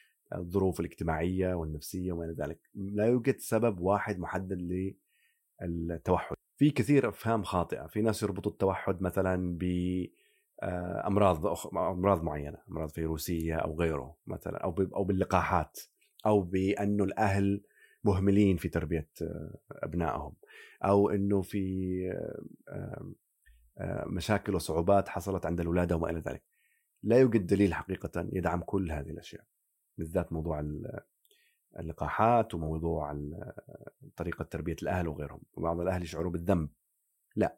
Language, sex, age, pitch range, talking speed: Arabic, male, 30-49, 85-105 Hz, 115 wpm